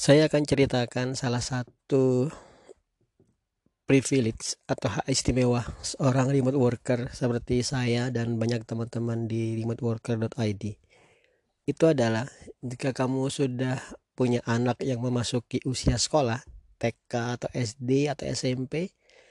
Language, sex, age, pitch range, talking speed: Indonesian, male, 40-59, 115-140 Hz, 110 wpm